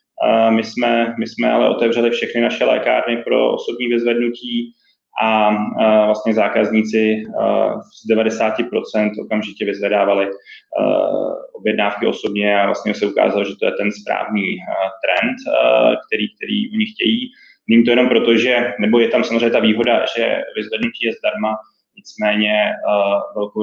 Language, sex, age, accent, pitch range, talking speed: Czech, male, 20-39, native, 105-125 Hz, 130 wpm